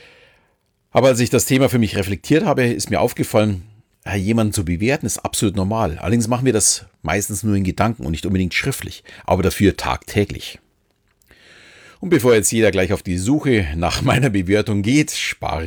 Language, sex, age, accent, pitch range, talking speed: German, male, 40-59, German, 90-120 Hz, 175 wpm